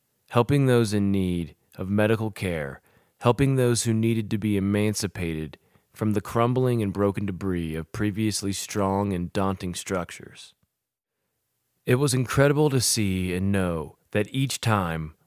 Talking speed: 140 wpm